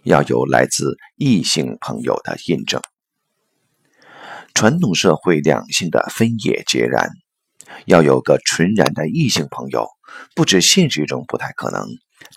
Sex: male